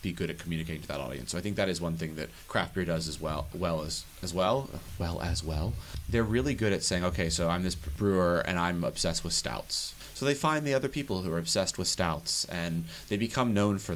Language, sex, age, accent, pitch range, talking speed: English, male, 30-49, American, 85-105 Hz, 250 wpm